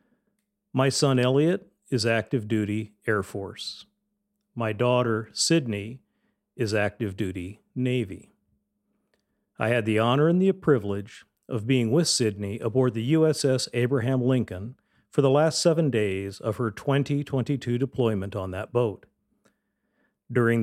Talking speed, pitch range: 130 wpm, 110-140 Hz